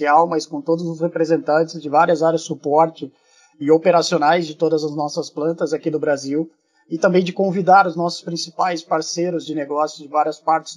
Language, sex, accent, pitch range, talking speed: Portuguese, male, Brazilian, 155-175 Hz, 185 wpm